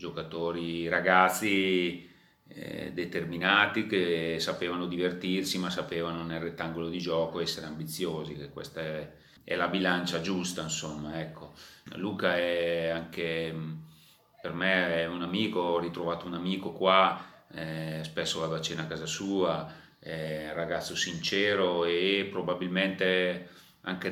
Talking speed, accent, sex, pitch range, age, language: 130 wpm, native, male, 85-100 Hz, 30-49, Italian